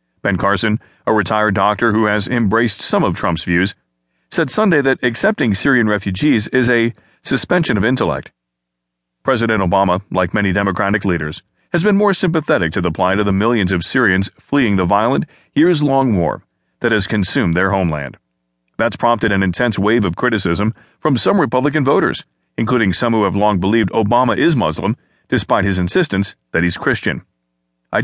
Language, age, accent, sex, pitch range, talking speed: English, 40-59, American, male, 90-120 Hz, 165 wpm